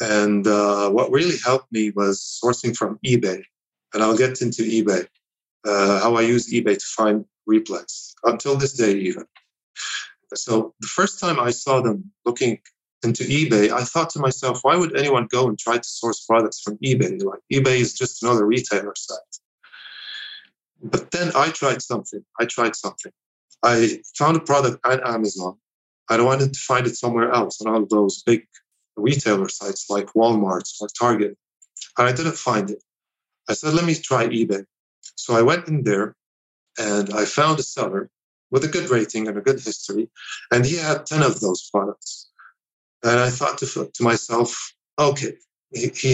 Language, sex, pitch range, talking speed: English, male, 105-135 Hz, 175 wpm